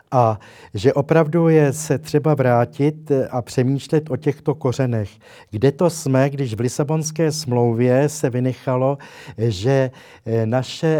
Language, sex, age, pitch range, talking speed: Slovak, male, 60-79, 120-145 Hz, 125 wpm